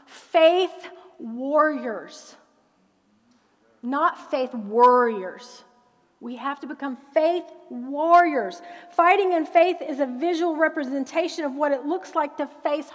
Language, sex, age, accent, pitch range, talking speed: English, female, 40-59, American, 250-310 Hz, 115 wpm